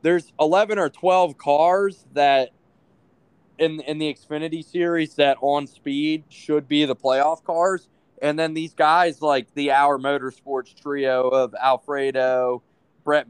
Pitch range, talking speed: 130-155 Hz, 140 wpm